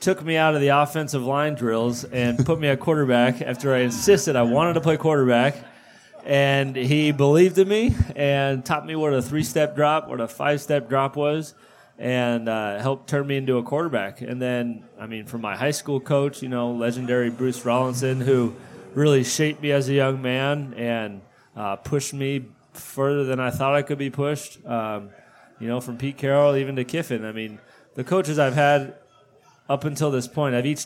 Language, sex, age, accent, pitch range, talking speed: English, male, 30-49, American, 120-145 Hz, 195 wpm